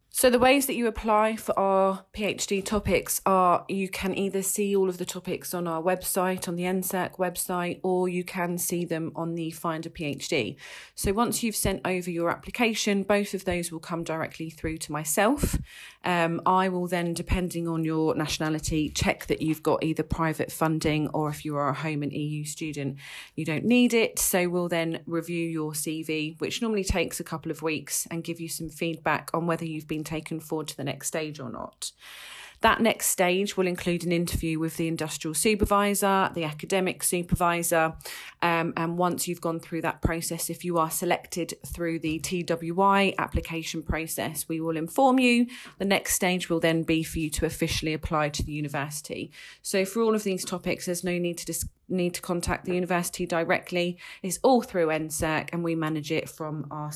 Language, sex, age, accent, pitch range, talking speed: English, female, 30-49, British, 160-185 Hz, 195 wpm